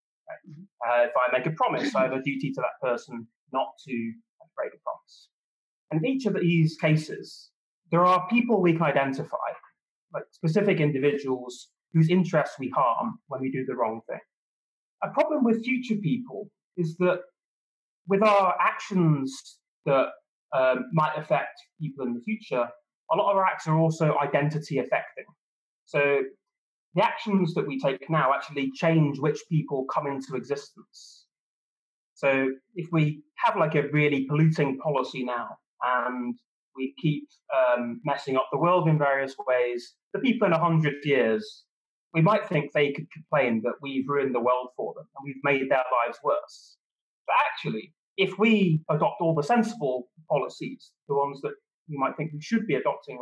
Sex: male